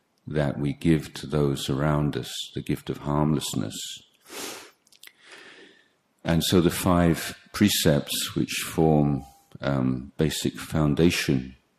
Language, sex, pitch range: English, male, 70-80 Hz